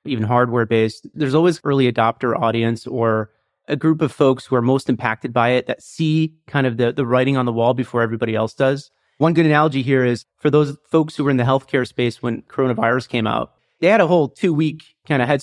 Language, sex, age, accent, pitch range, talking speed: English, male, 30-49, American, 125-155 Hz, 225 wpm